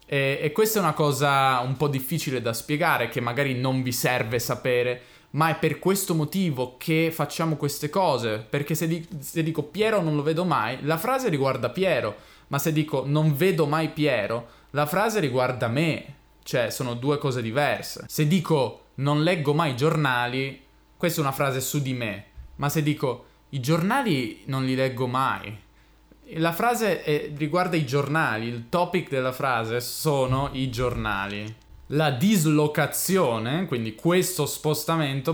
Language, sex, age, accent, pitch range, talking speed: Italian, male, 20-39, native, 125-160 Hz, 160 wpm